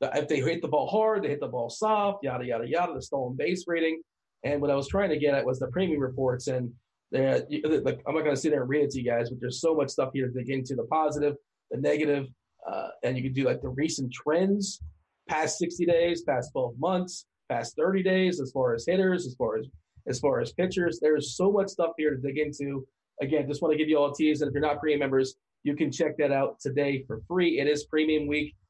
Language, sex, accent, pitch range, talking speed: English, male, American, 140-175 Hz, 250 wpm